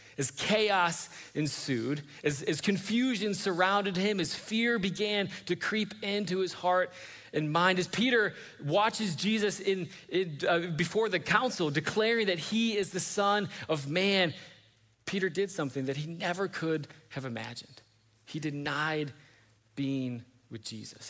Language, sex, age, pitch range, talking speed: English, male, 30-49, 120-165 Hz, 140 wpm